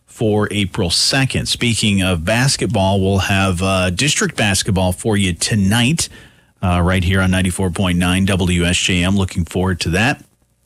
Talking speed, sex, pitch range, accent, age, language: 135 wpm, male, 95-135 Hz, American, 40-59, English